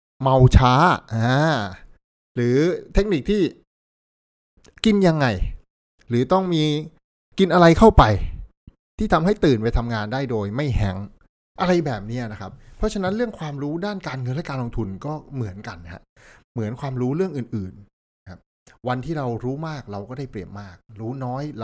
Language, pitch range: Thai, 100-140 Hz